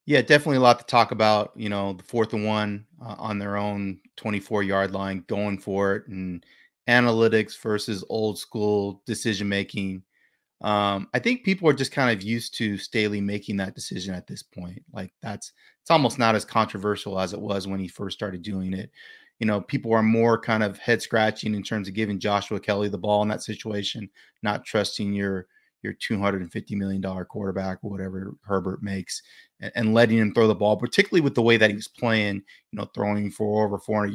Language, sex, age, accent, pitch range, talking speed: English, male, 30-49, American, 100-115 Hz, 195 wpm